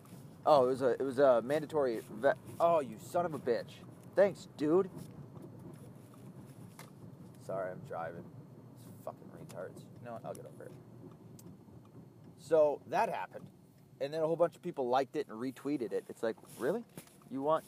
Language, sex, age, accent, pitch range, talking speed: English, male, 30-49, American, 135-175 Hz, 170 wpm